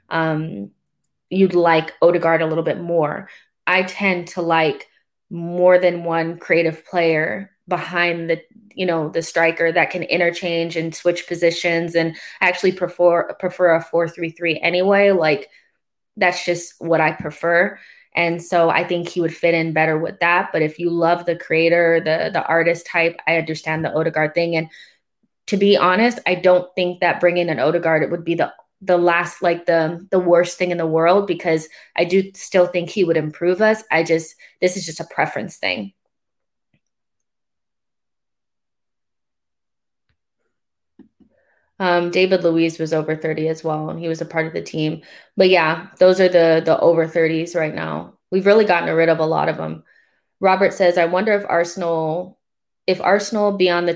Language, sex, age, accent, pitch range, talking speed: English, female, 20-39, American, 160-180 Hz, 175 wpm